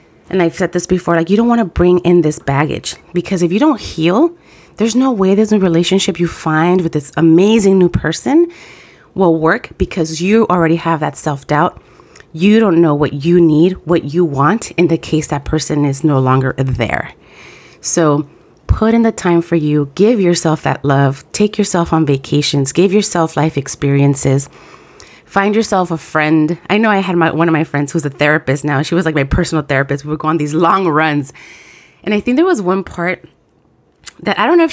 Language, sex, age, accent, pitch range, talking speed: English, female, 30-49, American, 155-210 Hz, 205 wpm